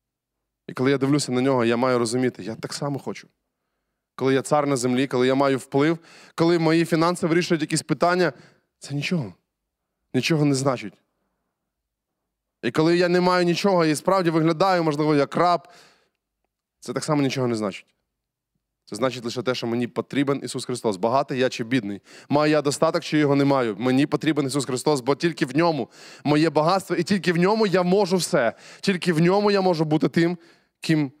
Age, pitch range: 20-39, 125-160 Hz